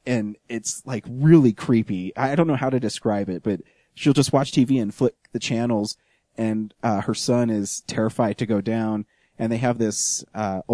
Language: English